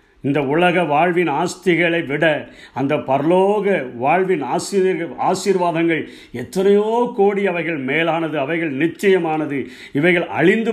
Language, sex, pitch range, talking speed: Tamil, male, 145-185 Hz, 95 wpm